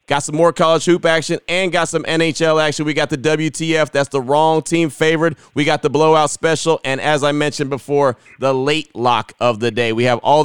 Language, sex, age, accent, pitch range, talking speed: English, male, 30-49, American, 125-155 Hz, 225 wpm